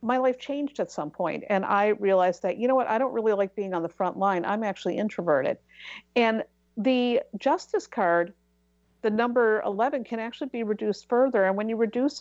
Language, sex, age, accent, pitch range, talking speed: English, female, 50-69, American, 185-235 Hz, 200 wpm